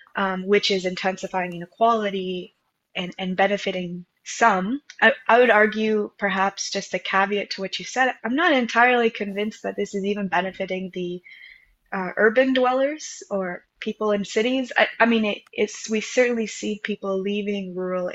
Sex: female